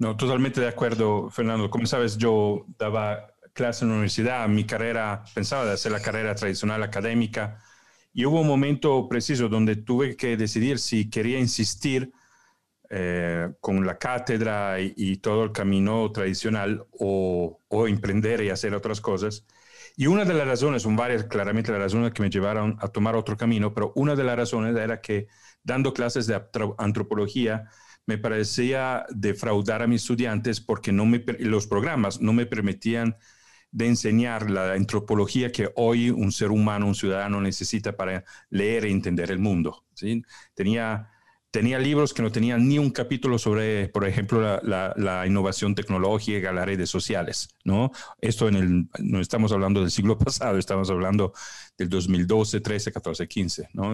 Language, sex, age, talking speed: Spanish, male, 40-59, 165 wpm